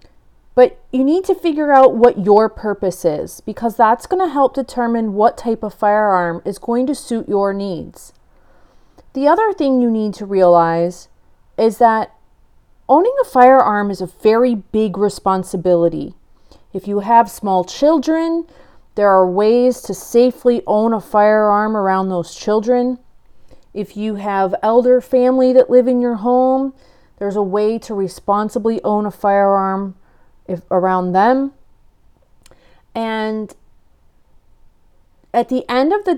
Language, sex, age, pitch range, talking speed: English, female, 30-49, 190-250 Hz, 140 wpm